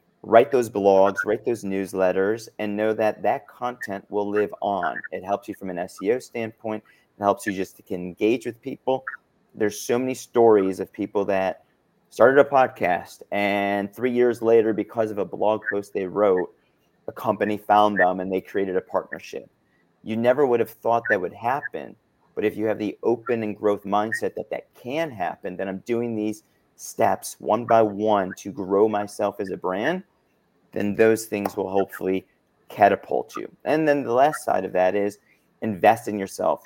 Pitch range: 95-115 Hz